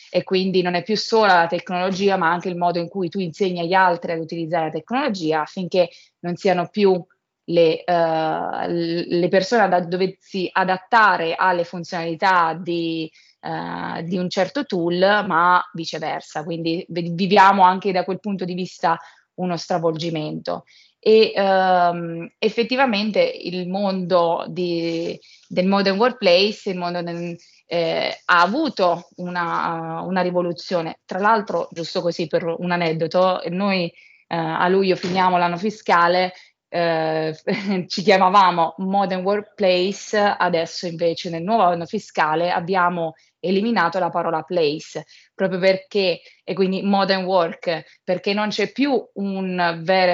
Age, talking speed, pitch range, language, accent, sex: 20-39, 135 wpm, 170-195 Hz, Italian, native, female